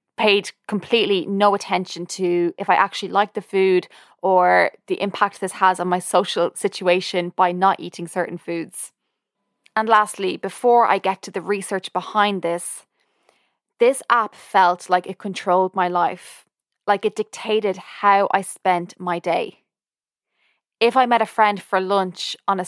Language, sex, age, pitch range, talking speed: English, female, 20-39, 180-200 Hz, 160 wpm